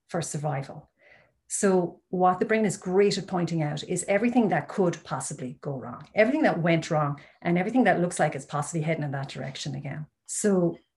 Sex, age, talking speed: female, 40-59, 190 wpm